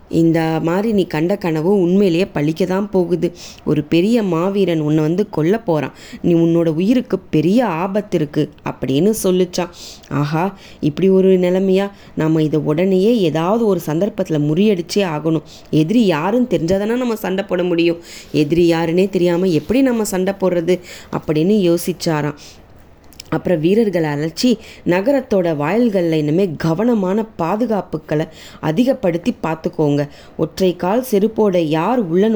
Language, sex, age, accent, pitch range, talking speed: English, female, 20-39, Indian, 160-205 Hz, 115 wpm